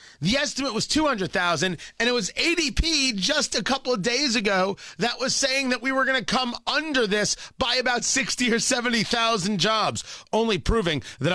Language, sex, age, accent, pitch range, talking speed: English, male, 30-49, American, 165-250 Hz, 180 wpm